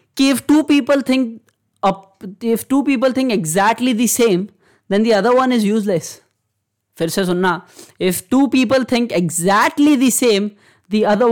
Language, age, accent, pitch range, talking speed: Hindi, 20-39, native, 175-225 Hz, 150 wpm